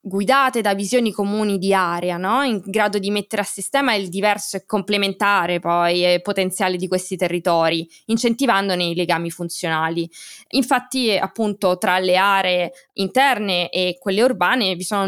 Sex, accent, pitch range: female, native, 180-225 Hz